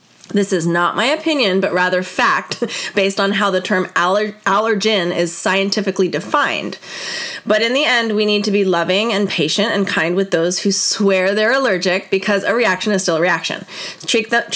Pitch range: 185-230 Hz